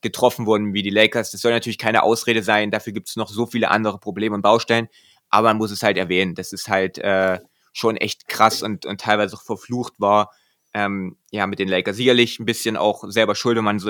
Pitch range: 100-110 Hz